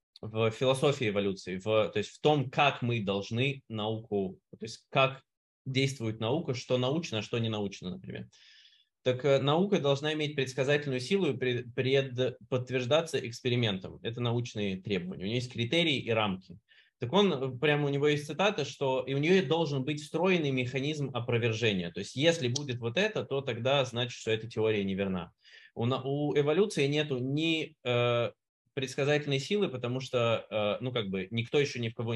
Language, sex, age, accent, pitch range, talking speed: Russian, male, 20-39, native, 110-140 Hz, 170 wpm